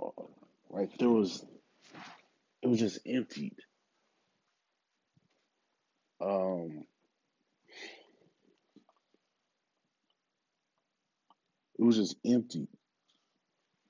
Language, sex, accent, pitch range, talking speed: English, male, American, 90-120 Hz, 50 wpm